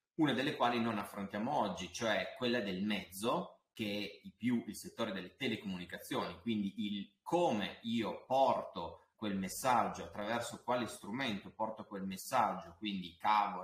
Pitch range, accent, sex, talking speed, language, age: 95-115 Hz, native, male, 145 wpm, Italian, 30-49